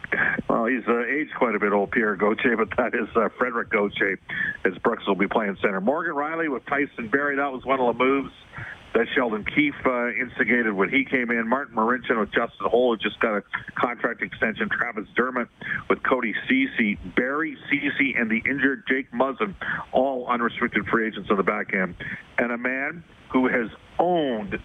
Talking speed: 190 wpm